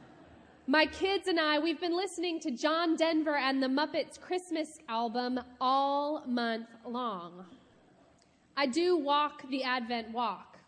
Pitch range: 210-275 Hz